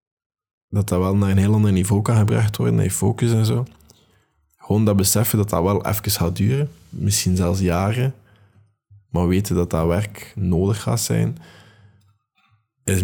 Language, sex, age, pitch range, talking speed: Dutch, male, 20-39, 90-105 Hz, 170 wpm